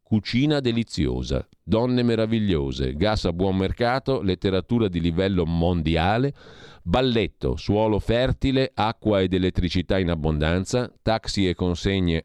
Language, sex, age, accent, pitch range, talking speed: Italian, male, 40-59, native, 80-115 Hz, 115 wpm